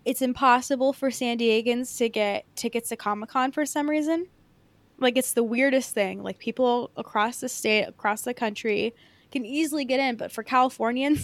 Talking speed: 175 wpm